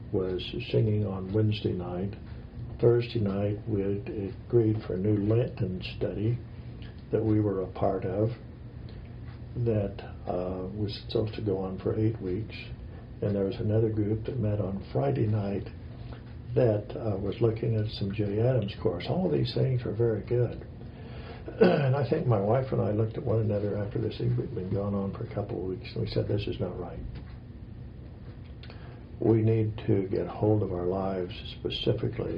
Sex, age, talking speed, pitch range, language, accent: male, 60-79, 175 wpm, 100-115 Hz, English, American